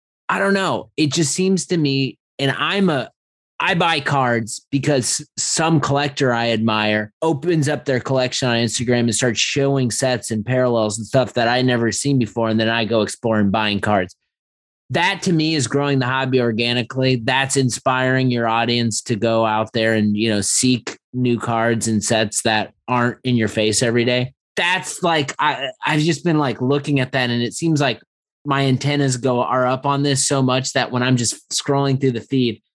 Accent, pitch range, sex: American, 115-140 Hz, male